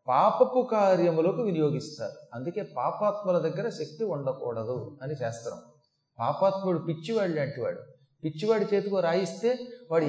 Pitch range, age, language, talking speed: 155-215 Hz, 30-49, Telugu, 105 wpm